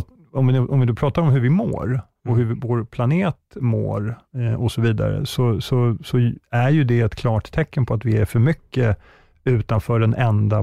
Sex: male